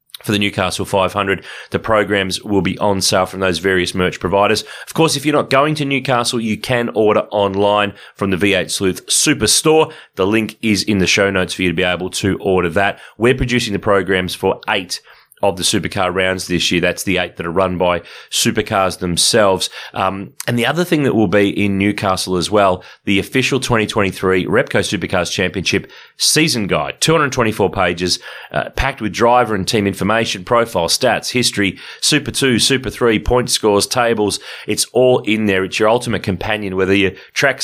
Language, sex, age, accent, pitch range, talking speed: English, male, 30-49, Australian, 95-115 Hz, 190 wpm